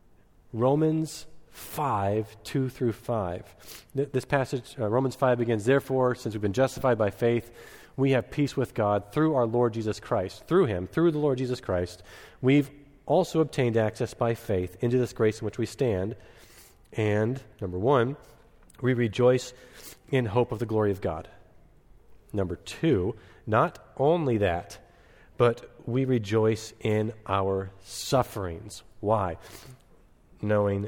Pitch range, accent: 105-125 Hz, American